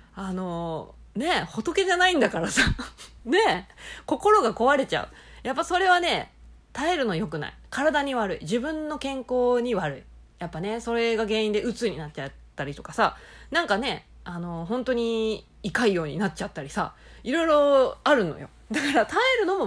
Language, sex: Japanese, female